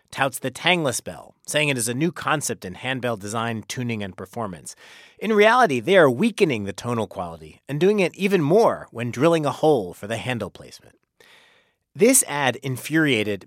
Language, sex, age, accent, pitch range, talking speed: English, male, 30-49, American, 105-155 Hz, 180 wpm